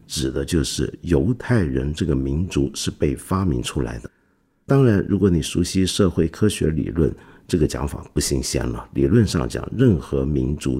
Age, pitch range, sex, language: 50-69, 70-100 Hz, male, Chinese